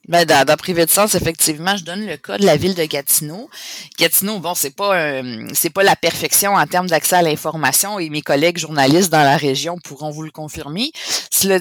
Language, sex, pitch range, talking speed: French, female, 145-180 Hz, 215 wpm